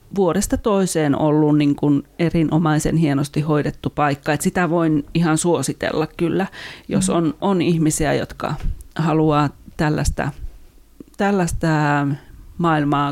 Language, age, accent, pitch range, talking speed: Finnish, 40-59, native, 155-185 Hz, 110 wpm